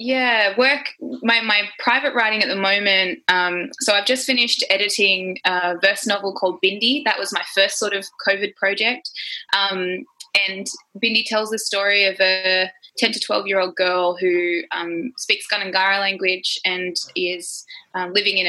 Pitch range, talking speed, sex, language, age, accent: 180-220 Hz, 170 wpm, female, English, 20-39, Australian